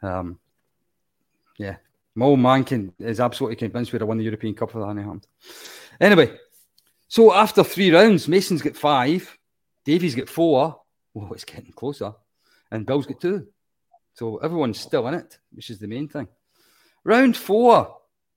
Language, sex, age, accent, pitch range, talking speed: English, male, 40-59, British, 115-170 Hz, 155 wpm